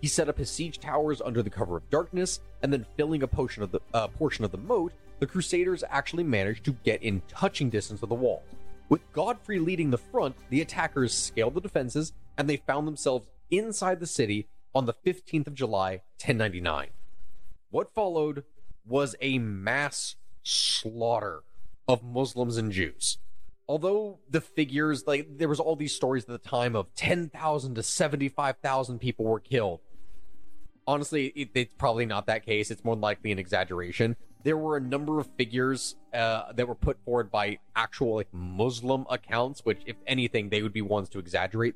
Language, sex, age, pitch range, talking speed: English, male, 30-49, 105-140 Hz, 175 wpm